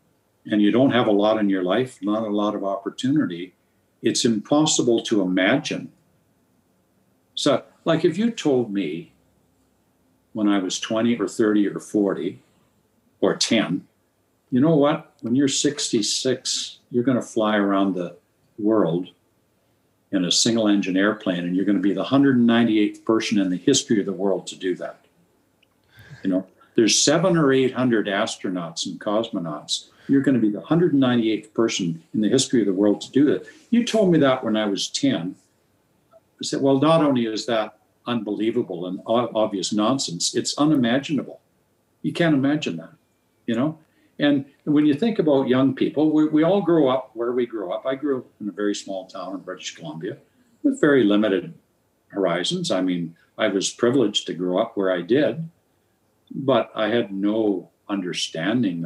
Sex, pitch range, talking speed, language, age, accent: male, 100-140 Hz, 170 wpm, English, 60-79, American